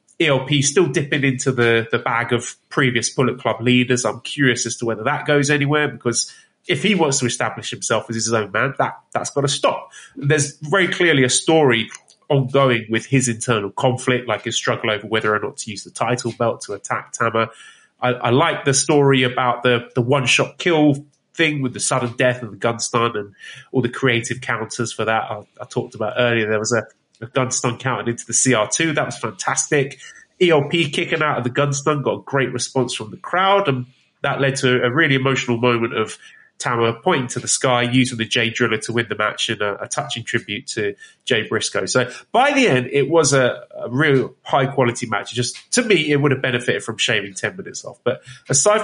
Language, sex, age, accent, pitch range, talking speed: English, male, 30-49, British, 120-145 Hz, 215 wpm